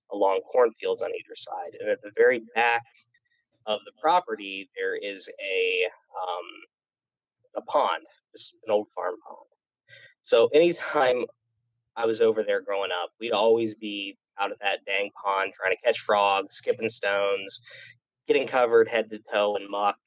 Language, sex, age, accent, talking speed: English, male, 20-39, American, 155 wpm